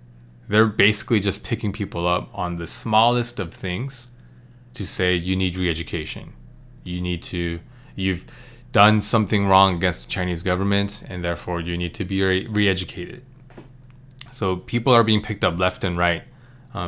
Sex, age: male, 20-39